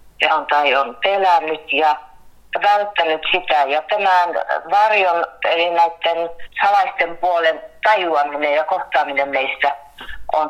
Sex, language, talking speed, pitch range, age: female, Finnish, 105 wpm, 160-220 Hz, 30-49